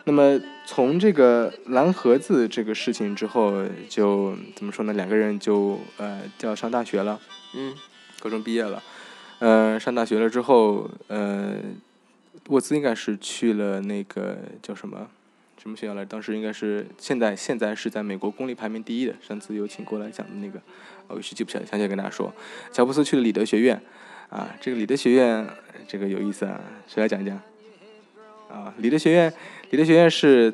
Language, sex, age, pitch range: Chinese, male, 20-39, 105-130 Hz